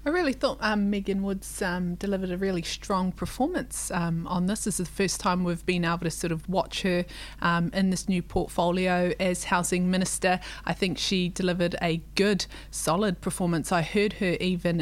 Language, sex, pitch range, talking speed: English, female, 170-190 Hz, 195 wpm